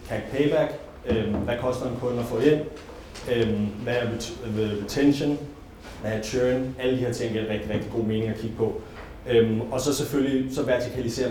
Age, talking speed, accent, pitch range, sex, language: 30-49, 165 wpm, native, 110-130 Hz, male, Danish